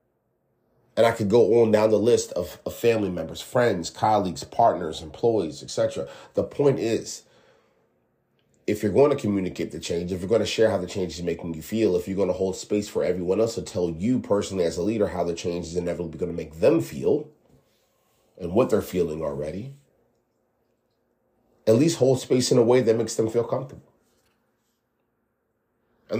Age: 30-49